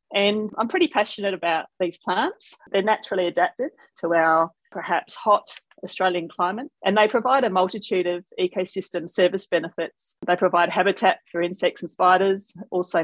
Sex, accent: female, Australian